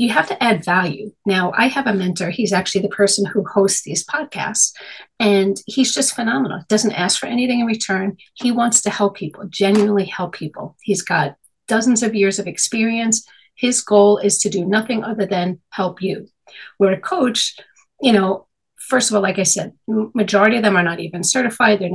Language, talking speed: English, 200 wpm